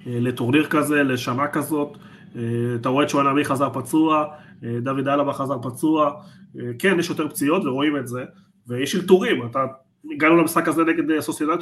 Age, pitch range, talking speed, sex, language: 30-49, 130-170 Hz, 150 wpm, male, Hebrew